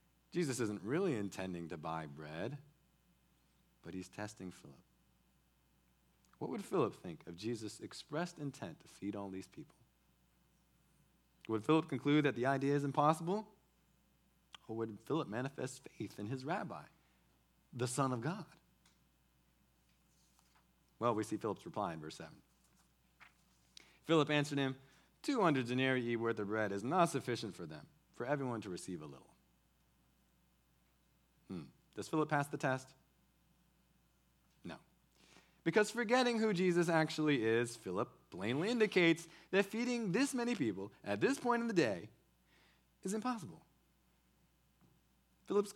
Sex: male